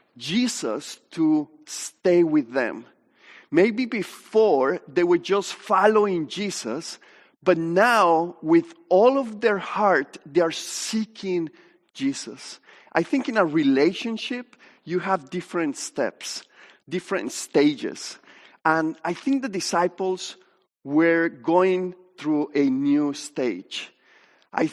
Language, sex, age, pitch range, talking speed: English, male, 40-59, 145-205 Hz, 110 wpm